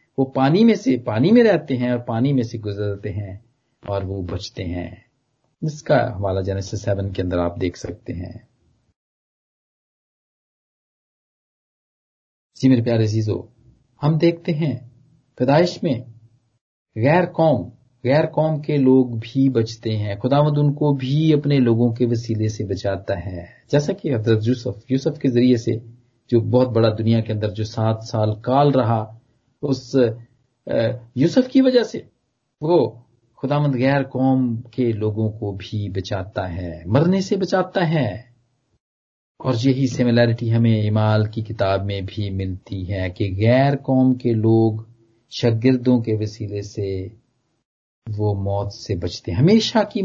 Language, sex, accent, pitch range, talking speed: Hindi, male, native, 110-140 Hz, 145 wpm